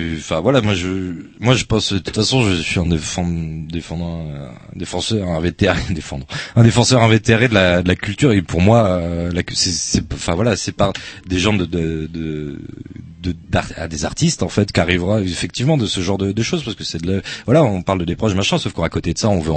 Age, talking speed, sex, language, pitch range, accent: 30-49, 240 wpm, male, French, 80-105 Hz, French